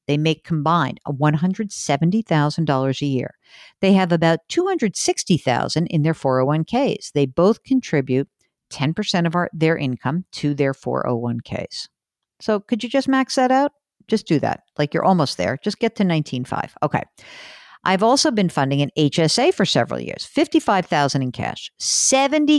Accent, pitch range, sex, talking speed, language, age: American, 140-215 Hz, female, 150 wpm, English, 50-69